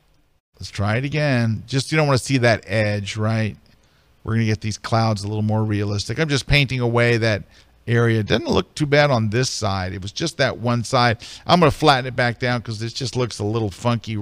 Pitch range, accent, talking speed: 105-125 Hz, American, 230 wpm